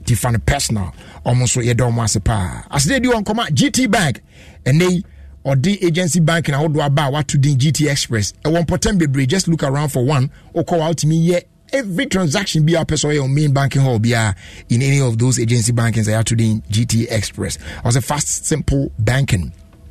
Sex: male